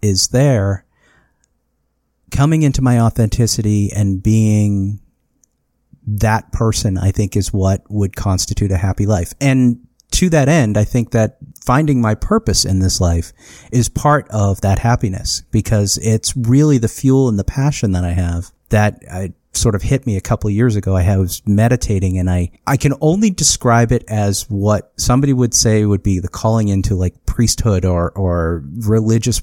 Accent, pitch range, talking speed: American, 95-115 Hz, 170 wpm